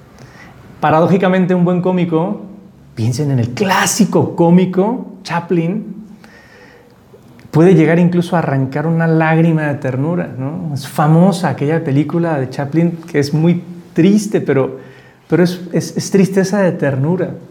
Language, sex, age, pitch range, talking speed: Spanish, male, 40-59, 135-185 Hz, 130 wpm